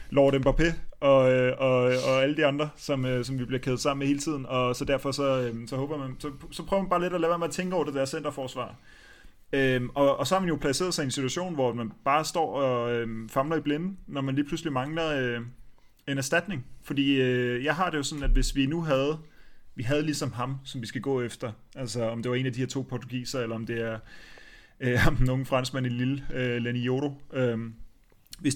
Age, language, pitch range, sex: 30-49, Danish, 125-145 Hz, male